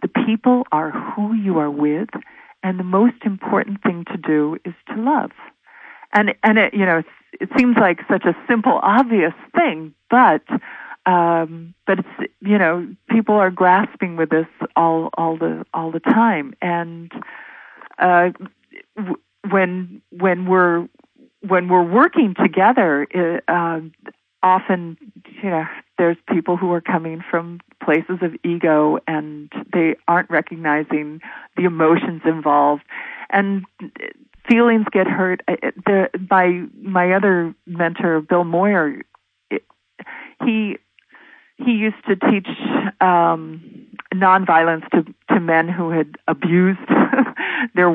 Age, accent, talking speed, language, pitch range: 40-59, American, 130 wpm, English, 165-225 Hz